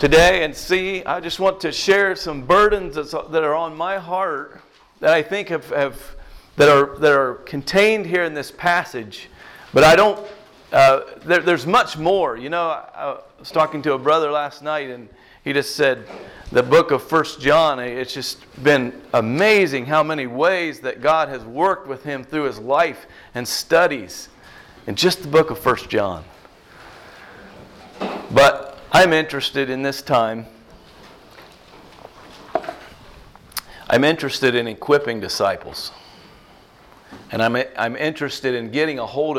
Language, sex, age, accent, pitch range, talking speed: English, male, 40-59, American, 125-165 Hz, 155 wpm